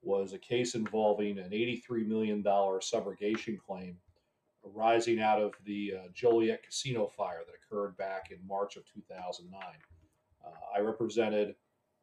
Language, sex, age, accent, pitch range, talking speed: English, male, 40-59, American, 105-125 Hz, 135 wpm